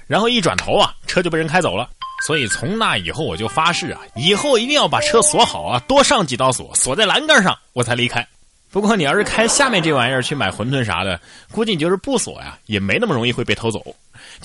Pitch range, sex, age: 125-210 Hz, male, 20-39